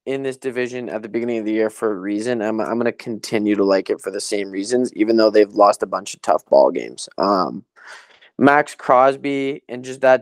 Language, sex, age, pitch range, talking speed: English, male, 20-39, 110-140 Hz, 235 wpm